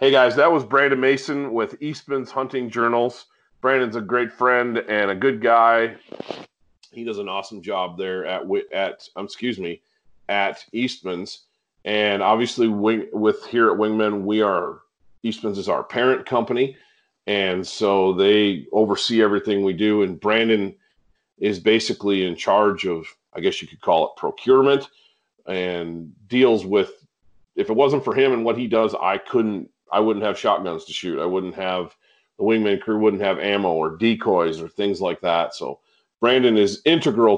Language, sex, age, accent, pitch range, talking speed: English, male, 40-59, American, 95-125 Hz, 165 wpm